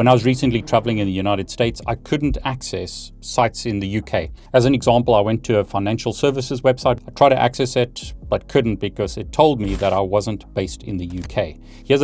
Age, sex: 30-49, male